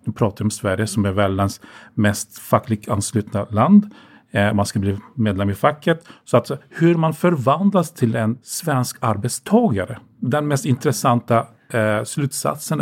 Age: 40-59